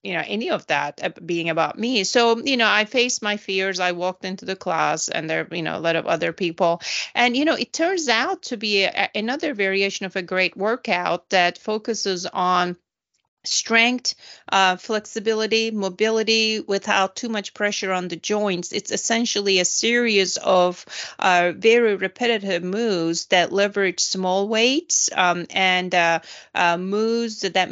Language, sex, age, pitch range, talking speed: English, female, 30-49, 180-220 Hz, 165 wpm